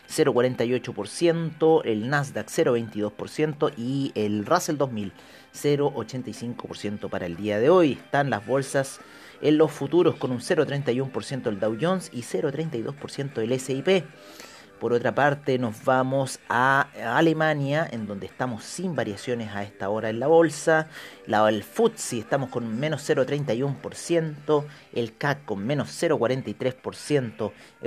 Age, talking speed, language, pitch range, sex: 40-59, 125 wpm, Spanish, 115-150 Hz, male